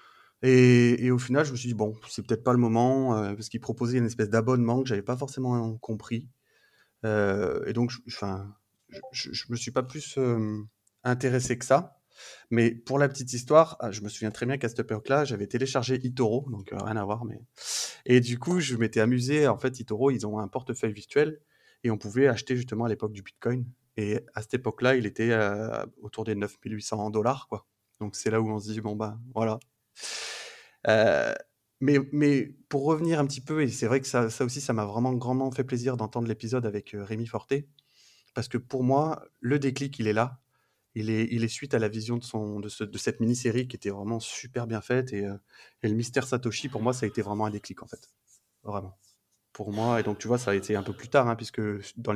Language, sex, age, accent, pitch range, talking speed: French, male, 30-49, French, 105-130 Hz, 230 wpm